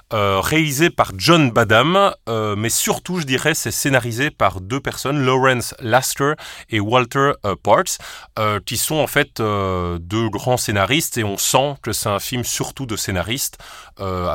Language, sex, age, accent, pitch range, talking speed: French, male, 30-49, French, 95-125 Hz, 170 wpm